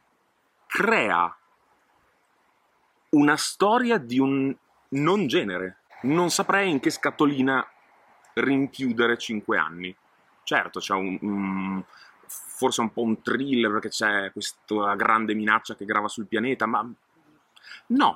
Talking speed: 110 wpm